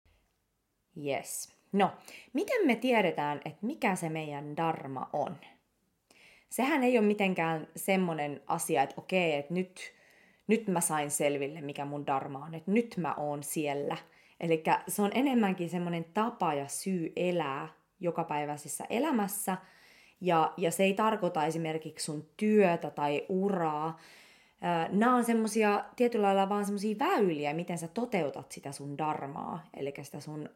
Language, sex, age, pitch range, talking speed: English, female, 20-39, 160-205 Hz, 140 wpm